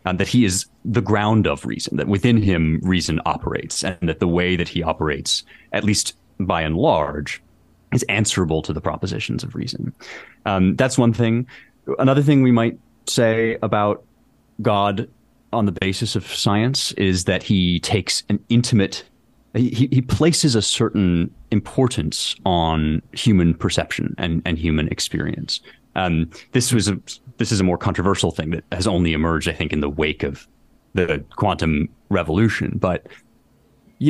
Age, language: 30-49, English